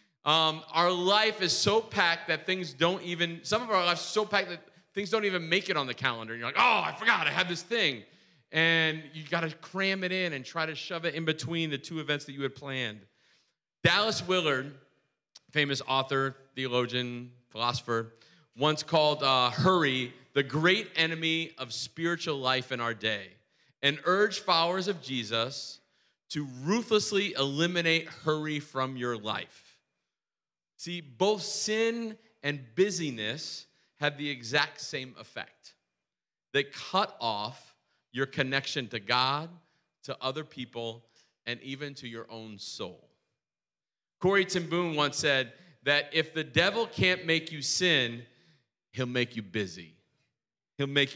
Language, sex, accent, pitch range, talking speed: English, male, American, 130-175 Hz, 155 wpm